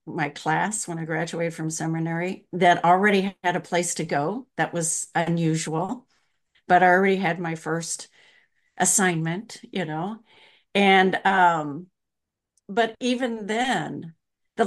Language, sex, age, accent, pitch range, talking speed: English, female, 50-69, American, 155-185 Hz, 130 wpm